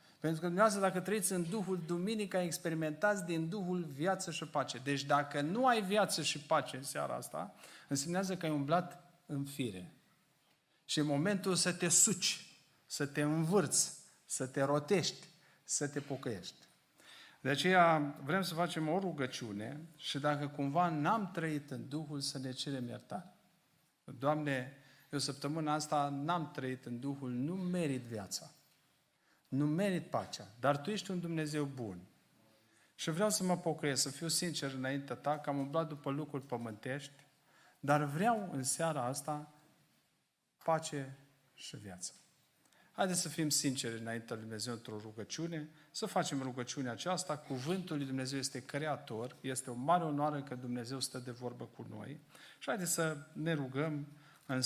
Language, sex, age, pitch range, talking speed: Romanian, male, 50-69, 135-170 Hz, 155 wpm